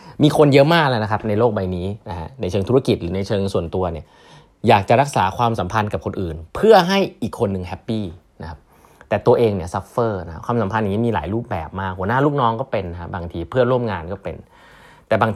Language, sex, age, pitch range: Thai, male, 20-39, 95-130 Hz